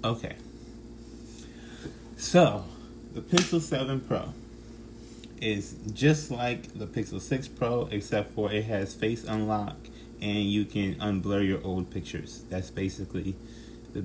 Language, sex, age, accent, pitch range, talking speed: English, male, 20-39, American, 100-115 Hz, 125 wpm